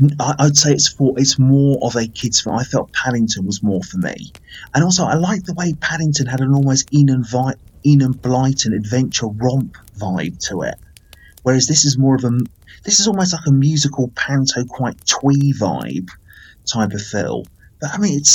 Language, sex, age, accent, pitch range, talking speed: English, male, 30-49, British, 105-140 Hz, 200 wpm